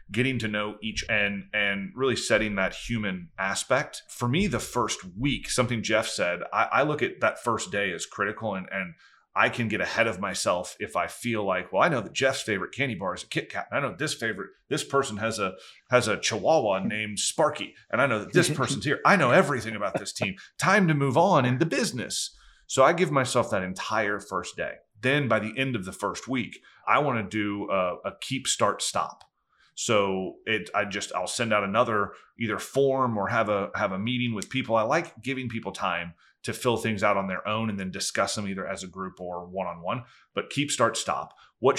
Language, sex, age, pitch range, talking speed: English, male, 30-49, 95-125 Hz, 225 wpm